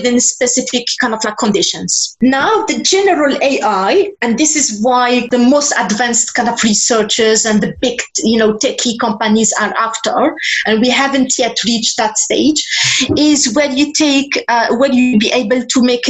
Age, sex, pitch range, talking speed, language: 30-49, female, 220-265 Hz, 175 wpm, English